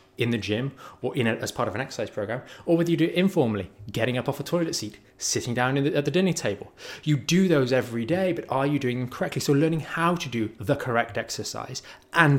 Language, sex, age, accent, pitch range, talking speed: English, male, 20-39, British, 125-160 Hz, 245 wpm